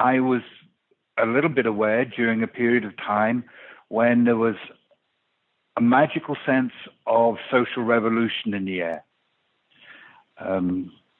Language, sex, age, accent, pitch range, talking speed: English, male, 60-79, British, 105-130 Hz, 130 wpm